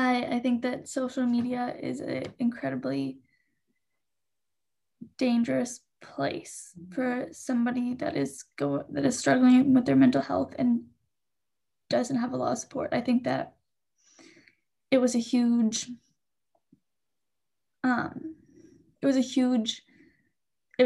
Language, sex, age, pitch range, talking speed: English, female, 10-29, 230-270 Hz, 120 wpm